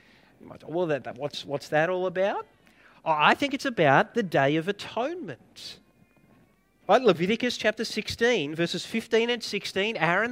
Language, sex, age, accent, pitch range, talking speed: English, male, 30-49, Australian, 170-225 Hz, 120 wpm